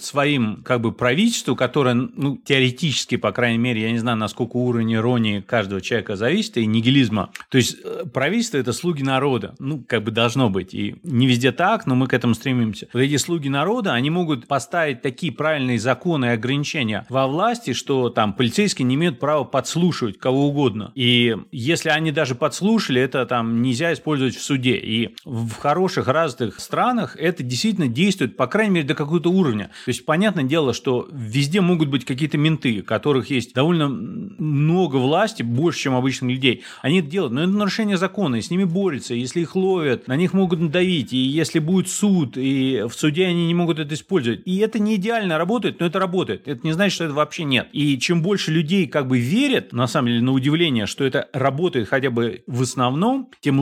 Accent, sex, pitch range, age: native, male, 125-175 Hz, 30-49